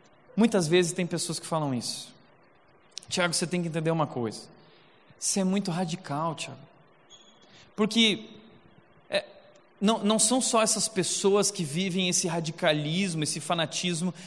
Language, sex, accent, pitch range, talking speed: Portuguese, male, Brazilian, 195-255 Hz, 130 wpm